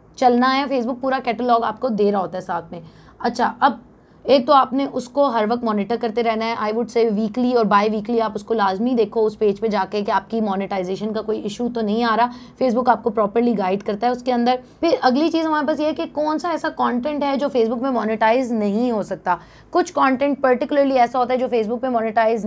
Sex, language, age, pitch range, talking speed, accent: female, English, 20-39, 230-260 Hz, 225 wpm, Indian